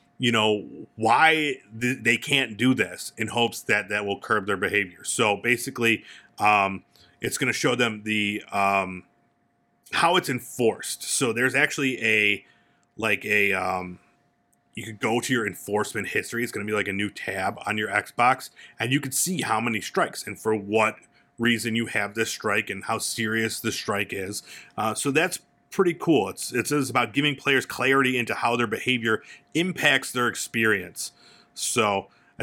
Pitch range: 100-120 Hz